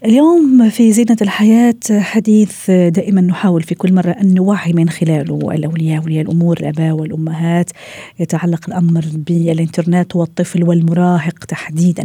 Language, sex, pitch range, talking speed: Arabic, female, 160-190 Hz, 120 wpm